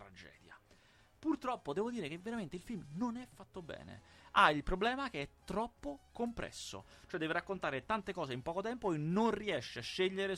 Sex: male